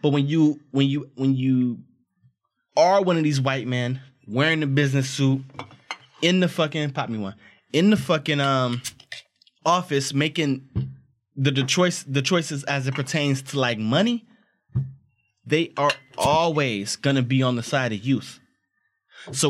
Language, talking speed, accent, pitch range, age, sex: English, 155 wpm, American, 130-165 Hz, 20-39, male